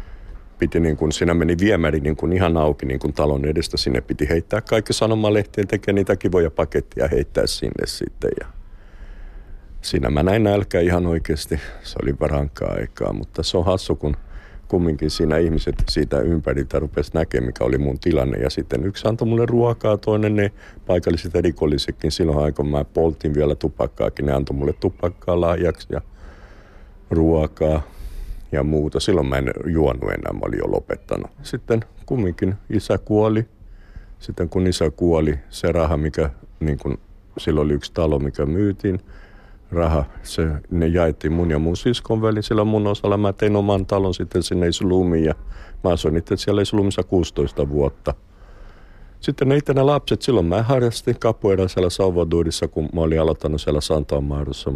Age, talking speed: 50-69, 160 wpm